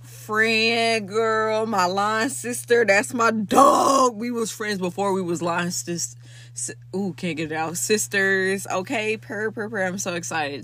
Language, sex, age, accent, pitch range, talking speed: English, female, 20-39, American, 130-185 Hz, 165 wpm